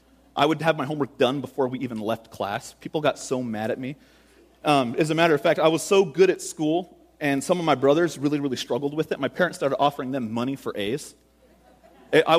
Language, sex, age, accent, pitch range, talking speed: English, male, 30-49, American, 125-180 Hz, 230 wpm